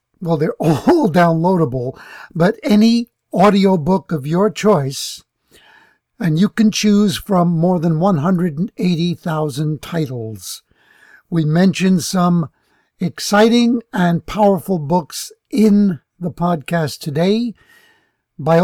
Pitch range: 160-210 Hz